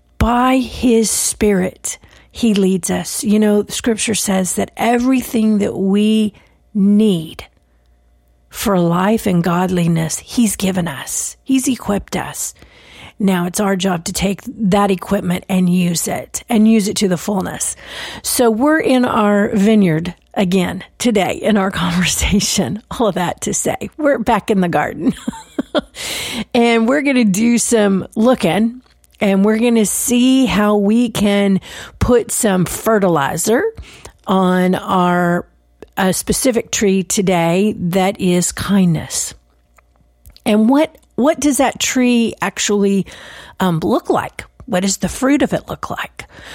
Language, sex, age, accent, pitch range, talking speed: English, female, 40-59, American, 180-225 Hz, 135 wpm